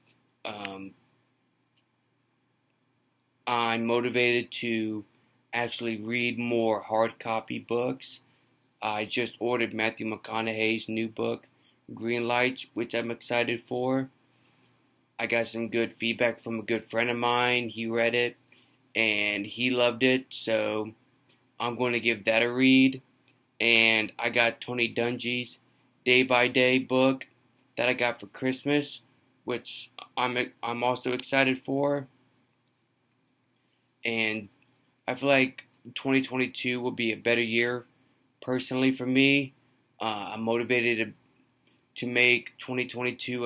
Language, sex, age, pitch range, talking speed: English, male, 20-39, 115-130 Hz, 120 wpm